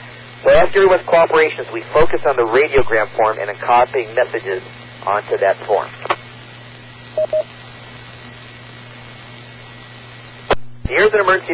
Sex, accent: male, American